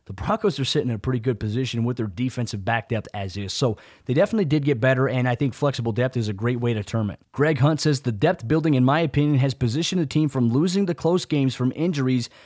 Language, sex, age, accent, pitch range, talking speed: English, male, 30-49, American, 125-150 Hz, 260 wpm